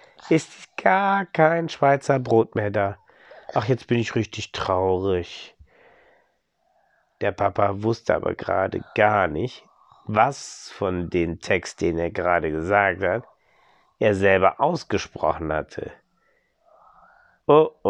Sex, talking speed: male, 115 wpm